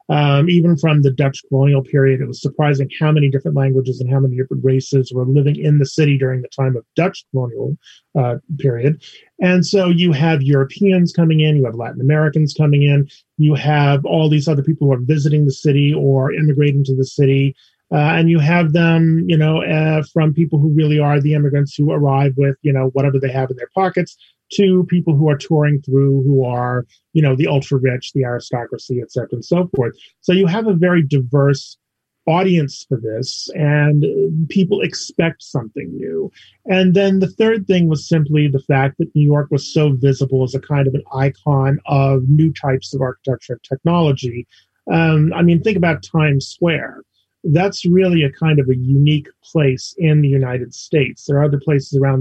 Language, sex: English, male